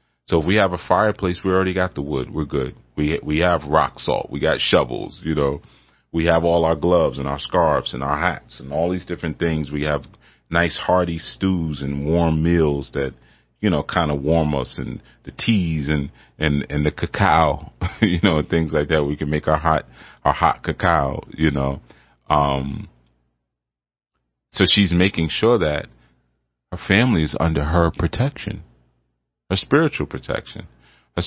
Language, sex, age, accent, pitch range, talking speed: English, male, 30-49, American, 65-90 Hz, 180 wpm